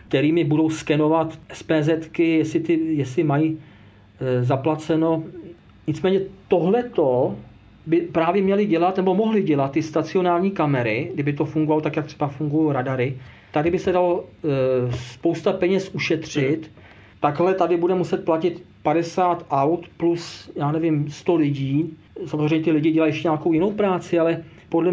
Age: 40-59